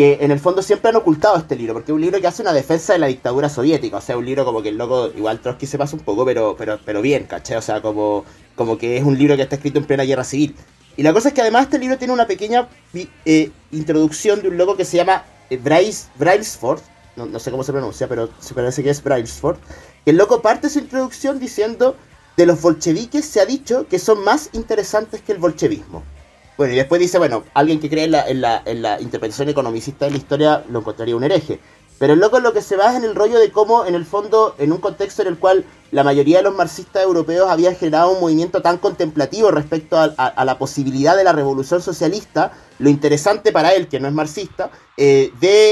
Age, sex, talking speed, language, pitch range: 30-49, male, 240 wpm, Spanish, 140-210 Hz